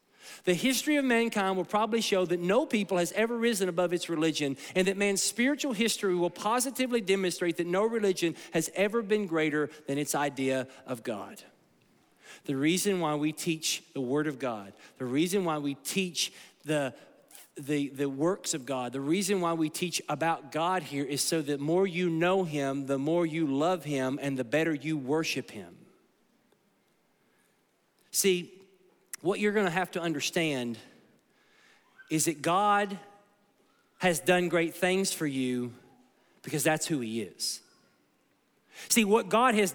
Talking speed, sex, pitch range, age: 160 wpm, male, 150-200 Hz, 40-59